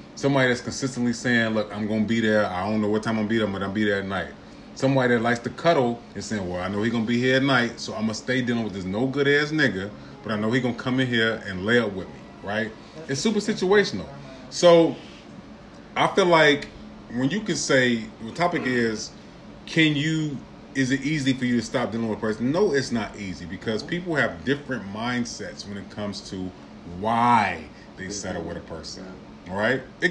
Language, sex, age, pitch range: English, male, 30-49, 110-140 Hz